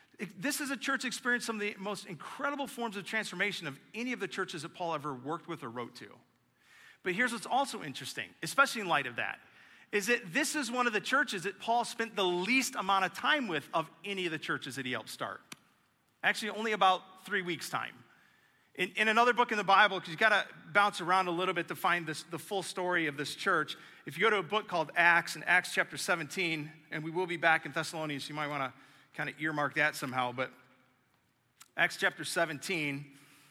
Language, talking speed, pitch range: English, 225 wpm, 155-205 Hz